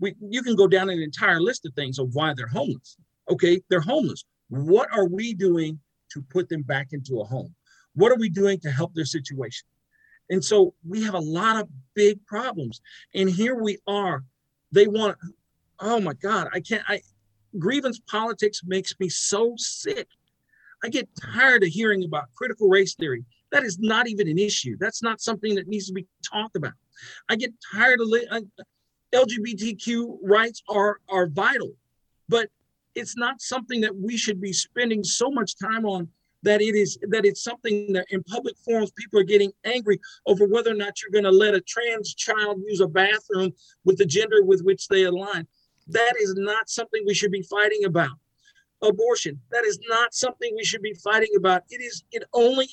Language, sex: English, male